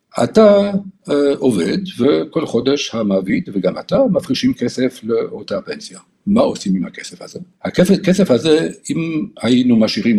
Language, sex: Hebrew, male